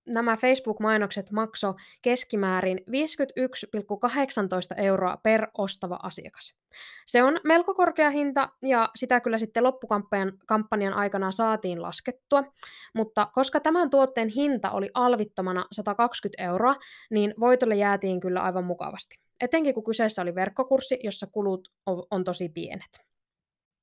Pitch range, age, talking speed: 190-250 Hz, 20-39, 120 wpm